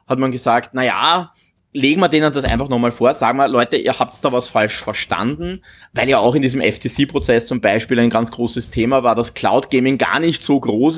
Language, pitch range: German, 120-160 Hz